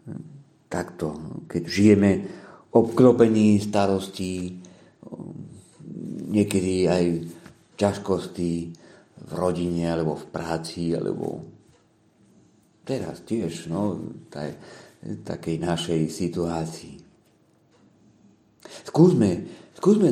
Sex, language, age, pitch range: male, Czech, 50-69, 85-120 Hz